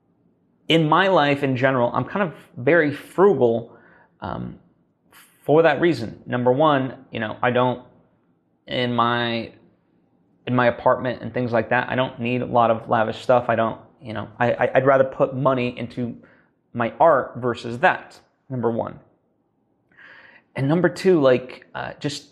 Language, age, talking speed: English, 30-49, 160 wpm